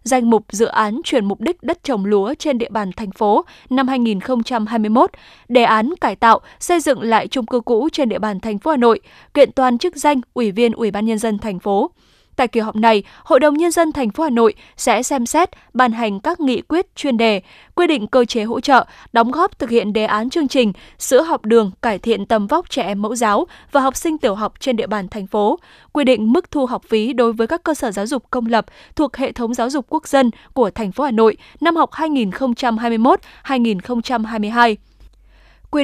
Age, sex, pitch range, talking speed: 10-29, female, 220-275 Hz, 225 wpm